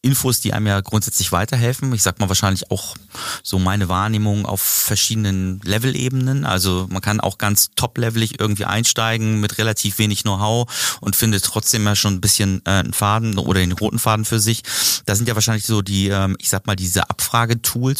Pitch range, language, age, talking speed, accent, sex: 100-115 Hz, German, 30-49, 190 wpm, German, male